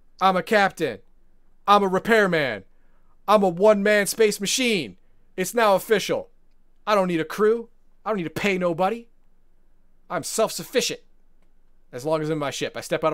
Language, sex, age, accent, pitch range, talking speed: English, male, 30-49, American, 140-180 Hz, 170 wpm